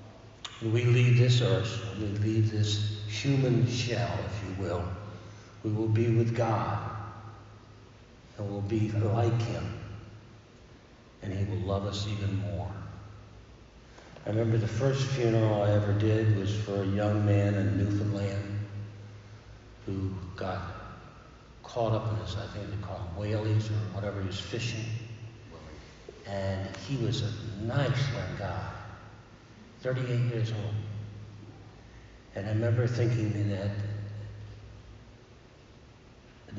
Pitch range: 100-115 Hz